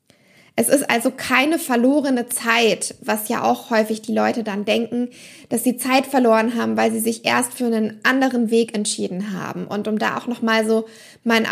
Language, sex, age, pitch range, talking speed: German, female, 20-39, 215-255 Hz, 190 wpm